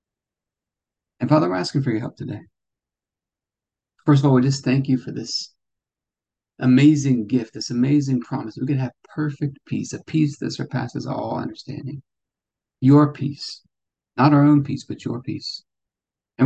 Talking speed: 155 wpm